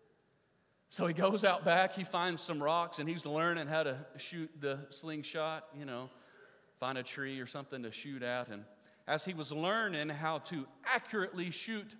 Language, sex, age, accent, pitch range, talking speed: English, male, 40-59, American, 145-215 Hz, 180 wpm